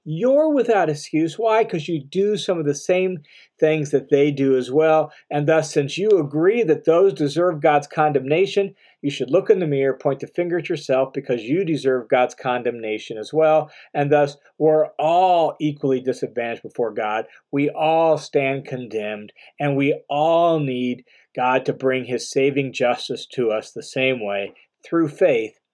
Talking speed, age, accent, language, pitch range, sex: 175 wpm, 40-59, American, English, 140-175 Hz, male